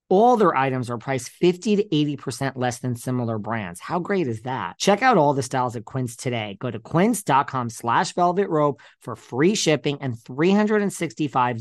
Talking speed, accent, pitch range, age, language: 180 wpm, American, 115-165 Hz, 40-59, English